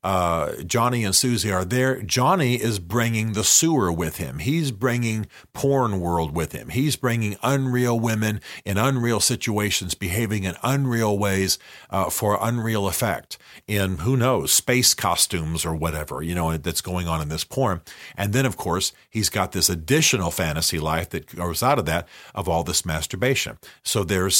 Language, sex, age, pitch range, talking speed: English, male, 50-69, 95-120 Hz, 170 wpm